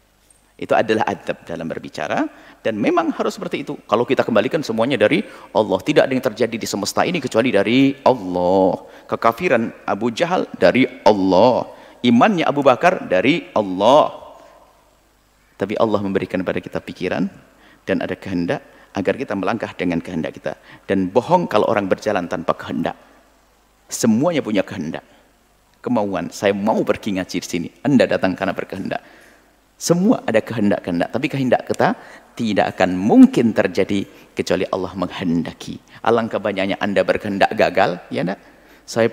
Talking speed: 145 wpm